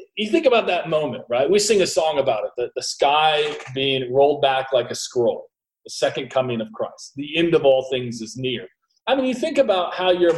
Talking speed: 230 wpm